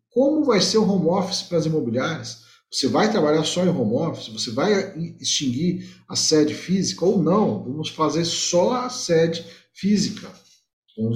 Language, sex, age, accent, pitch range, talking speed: Portuguese, male, 40-59, Brazilian, 125-175 Hz, 165 wpm